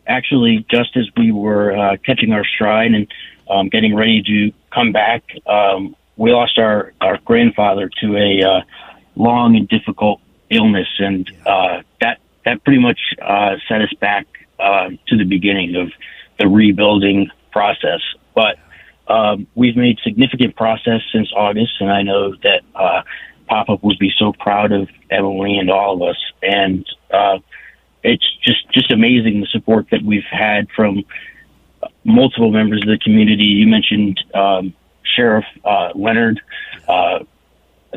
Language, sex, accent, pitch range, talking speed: English, male, American, 100-110 Hz, 150 wpm